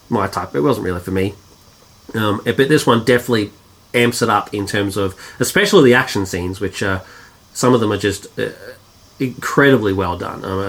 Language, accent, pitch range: English, Australian, 95-125 Hz